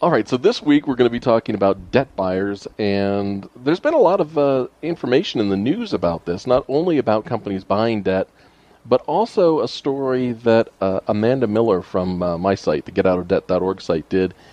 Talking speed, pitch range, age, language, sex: 195 wpm, 95-125 Hz, 40-59, English, male